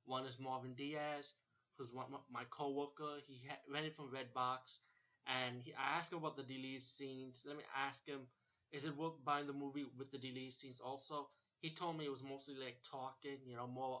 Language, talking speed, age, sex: English, 195 wpm, 20-39, male